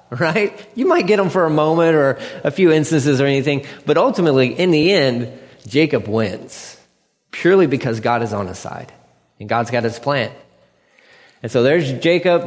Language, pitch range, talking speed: English, 115-155 Hz, 180 wpm